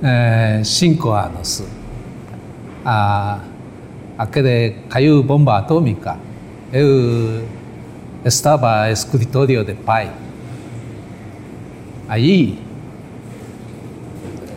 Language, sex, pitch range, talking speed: Portuguese, male, 115-145 Hz, 60 wpm